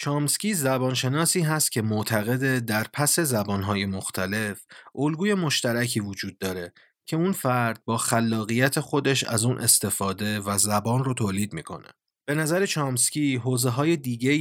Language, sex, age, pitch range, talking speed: Persian, male, 30-49, 105-140 Hz, 135 wpm